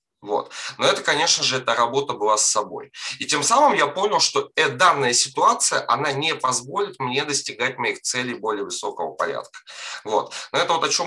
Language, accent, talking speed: Russian, native, 190 wpm